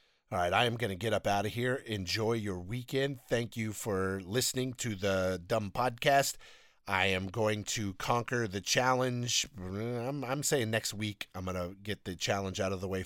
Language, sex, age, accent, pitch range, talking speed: English, male, 40-59, American, 90-115 Hz, 200 wpm